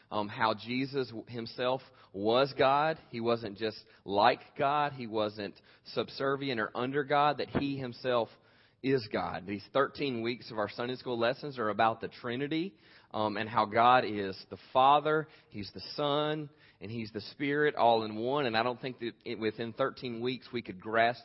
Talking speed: 175 wpm